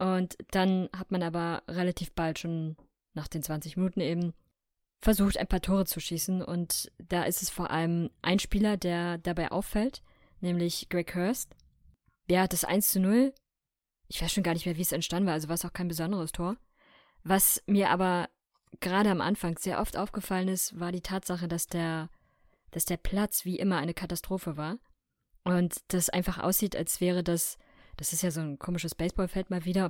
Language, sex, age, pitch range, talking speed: German, female, 20-39, 170-190 Hz, 195 wpm